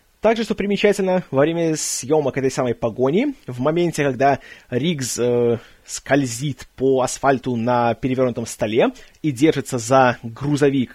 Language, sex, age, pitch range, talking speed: Russian, male, 20-39, 130-190 Hz, 130 wpm